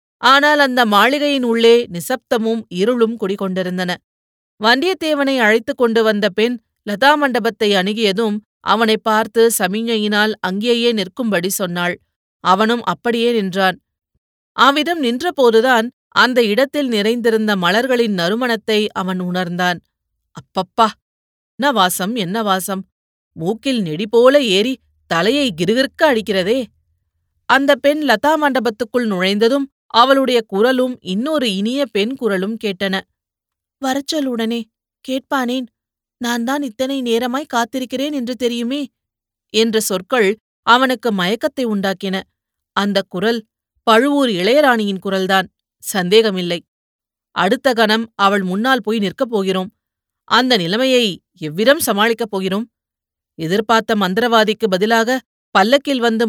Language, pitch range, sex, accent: Tamil, 195-250 Hz, female, native